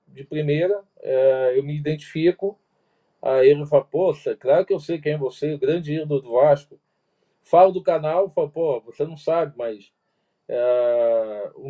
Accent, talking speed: Brazilian, 155 wpm